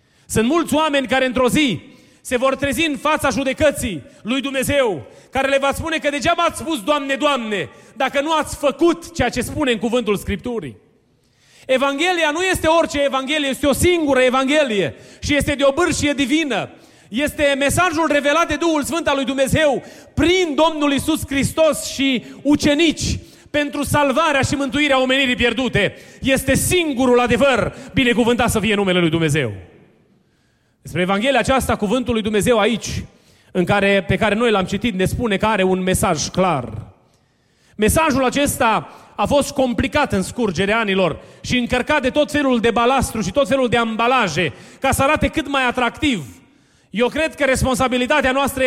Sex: male